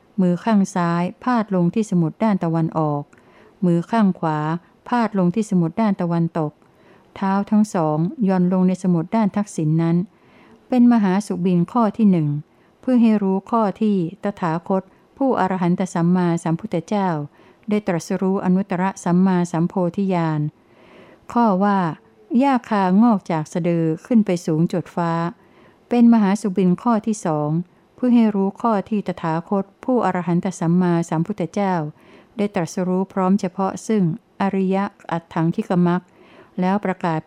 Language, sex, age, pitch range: Thai, female, 60-79, 170-210 Hz